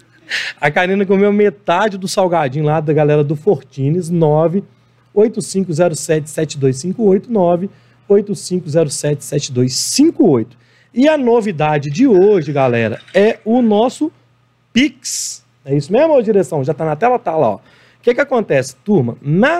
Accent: Brazilian